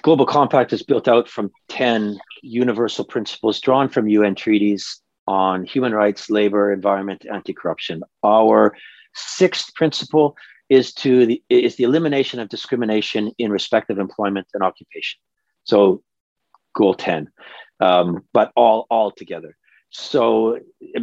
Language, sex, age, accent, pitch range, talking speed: English, male, 40-59, American, 95-115 Hz, 130 wpm